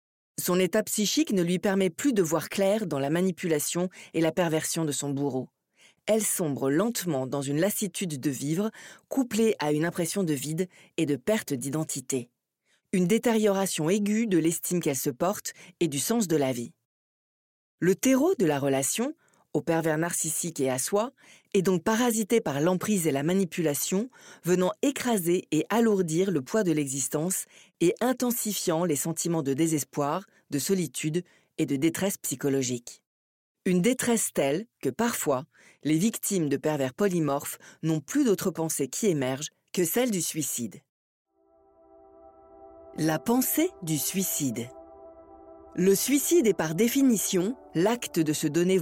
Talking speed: 150 wpm